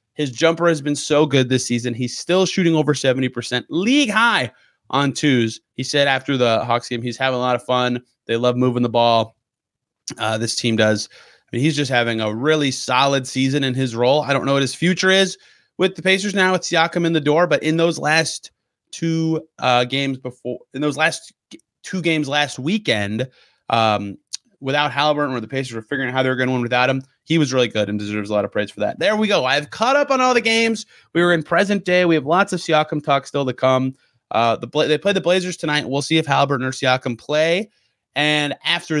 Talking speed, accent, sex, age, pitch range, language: 230 wpm, American, male, 30-49, 120-160 Hz, English